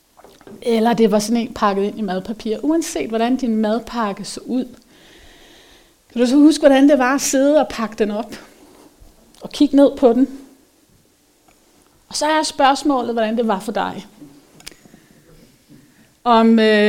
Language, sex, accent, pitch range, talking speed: Danish, female, native, 205-255 Hz, 155 wpm